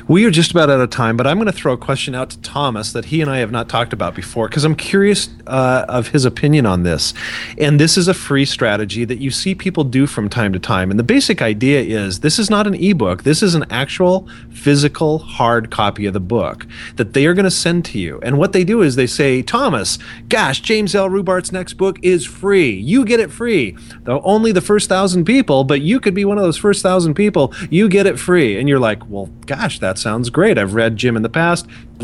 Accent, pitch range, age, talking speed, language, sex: American, 125-185 Hz, 30-49, 250 wpm, English, male